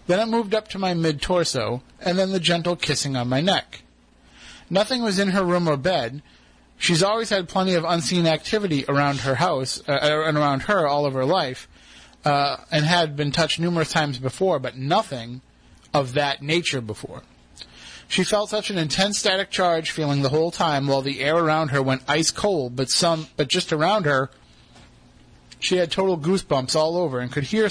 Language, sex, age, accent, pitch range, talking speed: English, male, 30-49, American, 135-175 Hz, 195 wpm